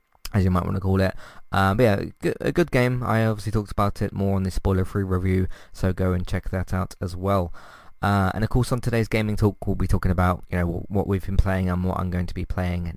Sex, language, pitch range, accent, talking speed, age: male, English, 95-115 Hz, British, 260 wpm, 20-39